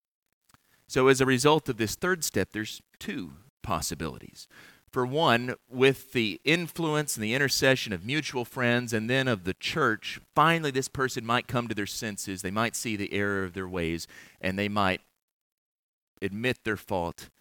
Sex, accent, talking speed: male, American, 170 wpm